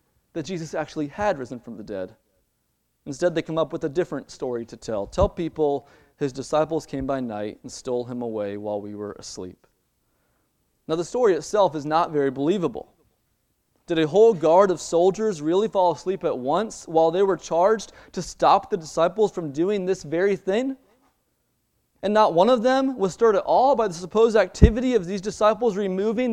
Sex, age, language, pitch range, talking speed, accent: male, 30-49, English, 155-235 Hz, 185 wpm, American